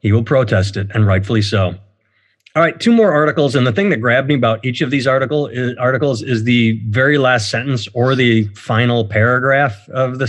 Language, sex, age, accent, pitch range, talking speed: English, male, 30-49, American, 110-150 Hz, 200 wpm